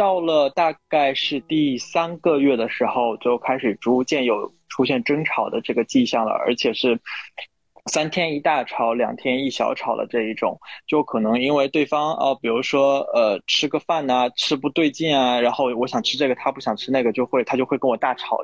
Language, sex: Chinese, male